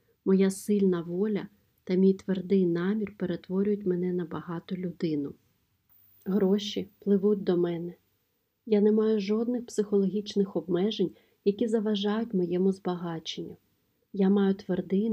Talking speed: 115 wpm